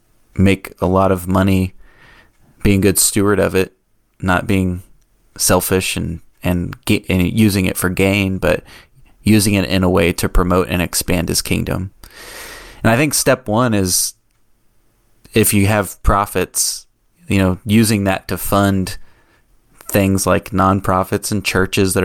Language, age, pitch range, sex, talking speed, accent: English, 20-39, 90-100 Hz, male, 150 wpm, American